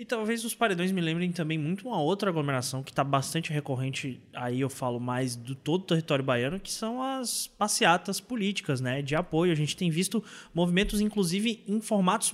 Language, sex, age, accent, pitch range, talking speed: Portuguese, male, 20-39, Brazilian, 145-195 Hz, 195 wpm